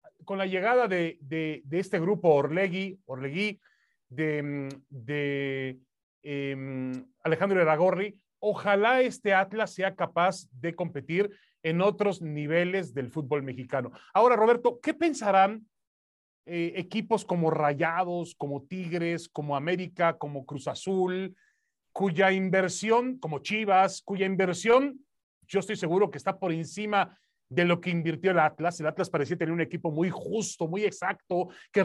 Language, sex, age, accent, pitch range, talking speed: Spanish, male, 30-49, Mexican, 165-215 Hz, 140 wpm